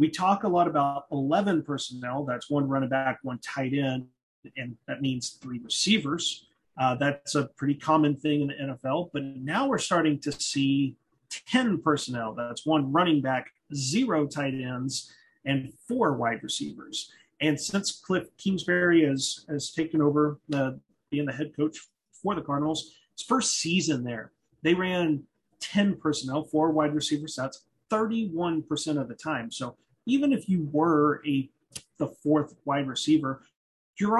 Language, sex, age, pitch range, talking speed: English, male, 30-49, 135-165 Hz, 160 wpm